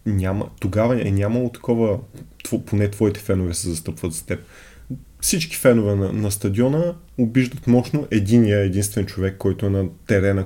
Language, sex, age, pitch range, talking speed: Bulgarian, male, 20-39, 95-120 Hz, 155 wpm